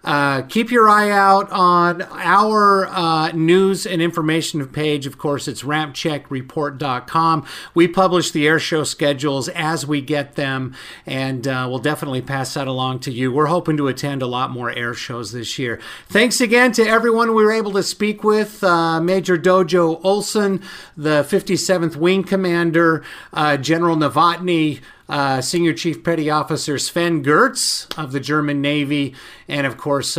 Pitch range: 140-180 Hz